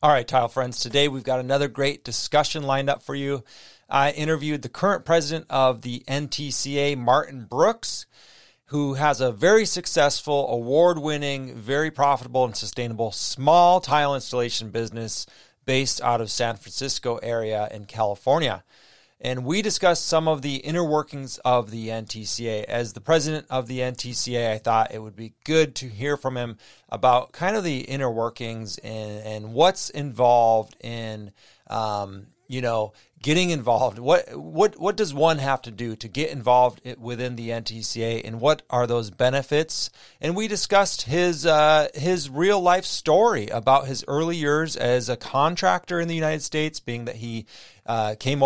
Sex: male